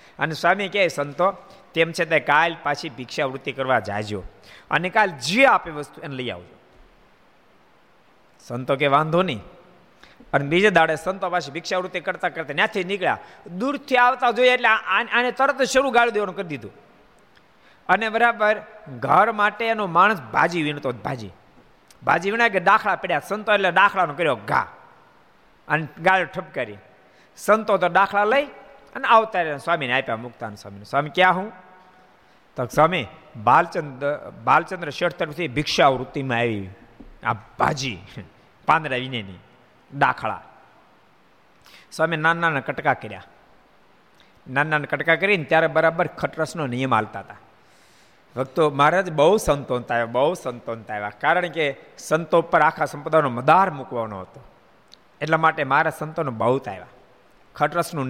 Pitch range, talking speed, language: 135-190 Hz, 125 wpm, Gujarati